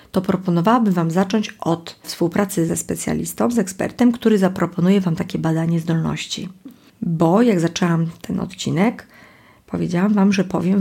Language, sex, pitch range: Polish, female, 165-195 Hz